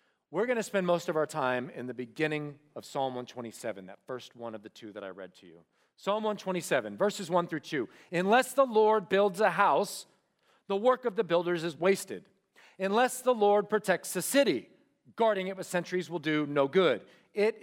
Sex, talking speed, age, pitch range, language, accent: male, 200 wpm, 40-59, 150-220 Hz, English, American